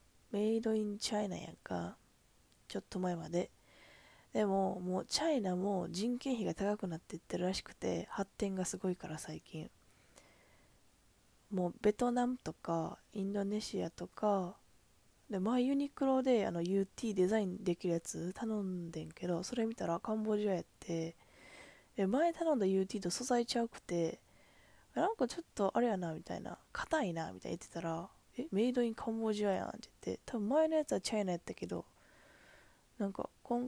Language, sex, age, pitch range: Japanese, female, 20-39, 175-220 Hz